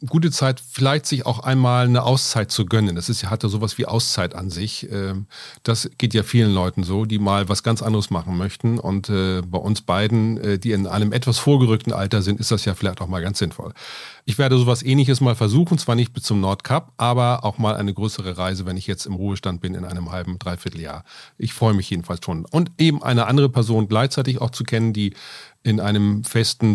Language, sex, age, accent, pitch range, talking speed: German, male, 40-59, German, 100-120 Hz, 220 wpm